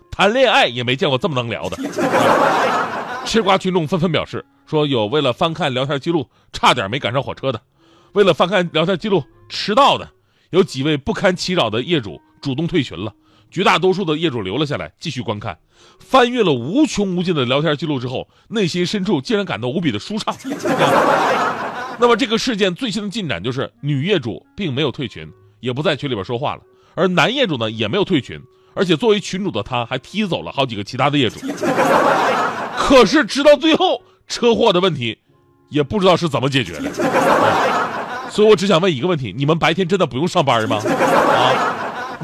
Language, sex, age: Chinese, male, 30-49